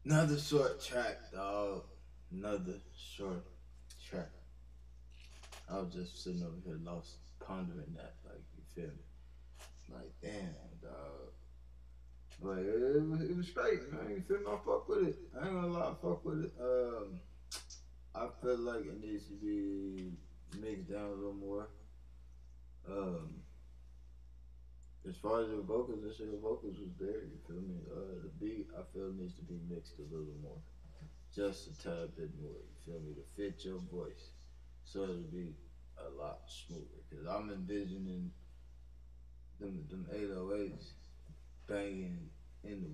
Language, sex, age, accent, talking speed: English, male, 20-39, American, 155 wpm